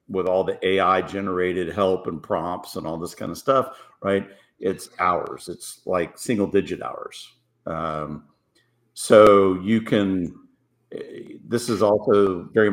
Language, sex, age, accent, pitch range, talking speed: English, male, 50-69, American, 95-115 Hz, 140 wpm